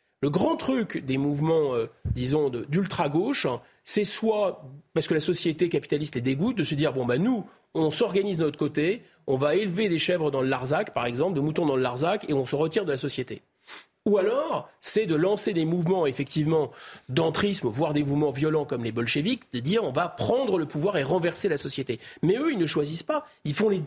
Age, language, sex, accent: 30-49, French, male, French